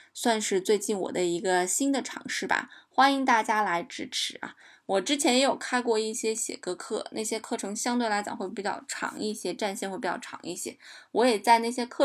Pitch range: 200-255 Hz